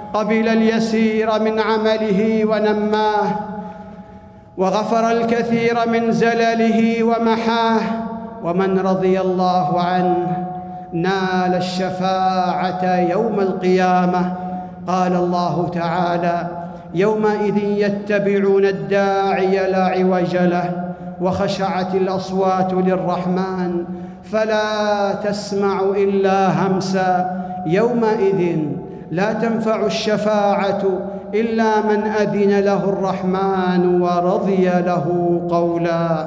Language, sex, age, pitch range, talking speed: Arabic, male, 50-69, 175-205 Hz, 75 wpm